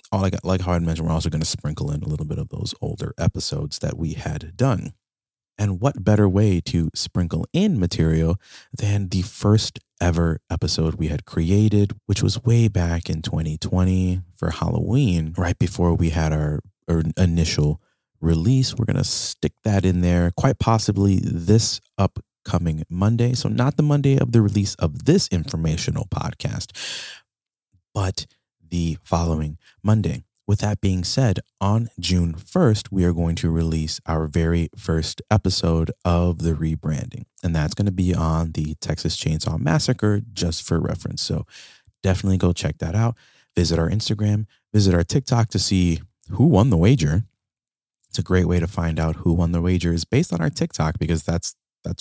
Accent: American